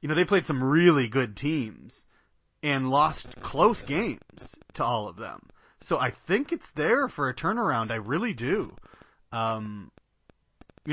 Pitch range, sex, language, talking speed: 115-145 Hz, male, English, 160 wpm